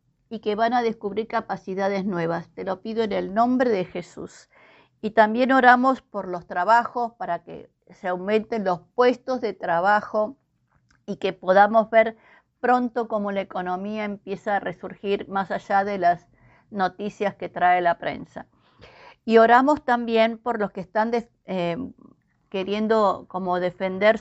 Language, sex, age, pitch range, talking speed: Spanish, female, 50-69, 190-245 Hz, 150 wpm